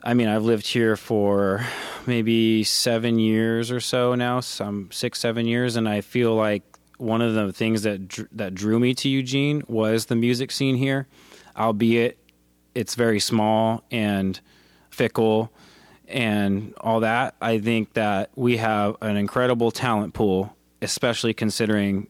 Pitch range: 100-115 Hz